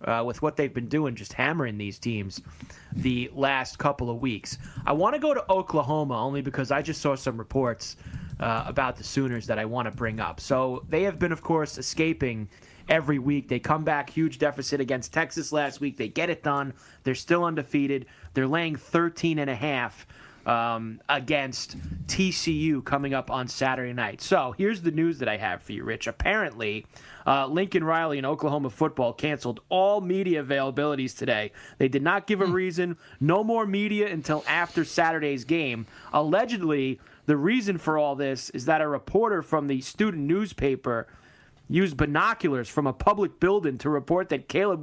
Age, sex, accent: 30-49, male, American